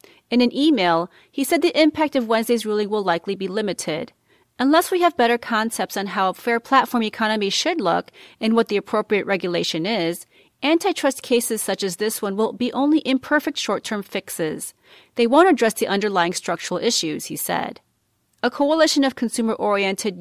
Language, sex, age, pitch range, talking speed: English, female, 30-49, 200-260 Hz, 170 wpm